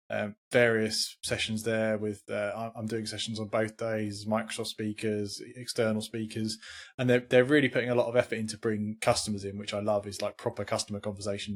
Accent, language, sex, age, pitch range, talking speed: British, English, male, 20-39, 105-120 Hz, 190 wpm